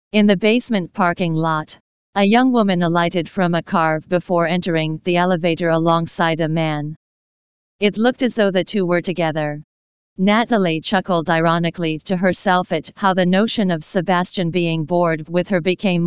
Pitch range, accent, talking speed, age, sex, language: 165-195 Hz, American, 160 wpm, 40-59, female, English